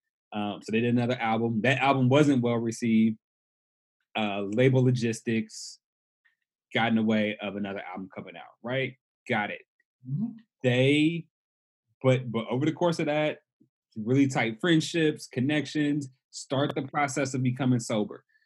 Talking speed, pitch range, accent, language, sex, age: 140 wpm, 115-150 Hz, American, English, male, 20-39